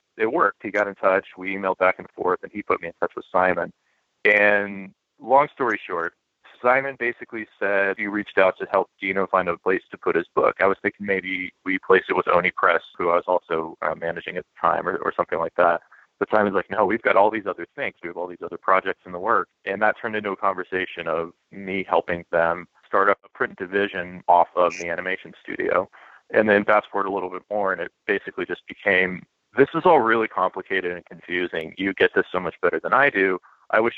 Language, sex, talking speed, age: English, male, 235 wpm, 30-49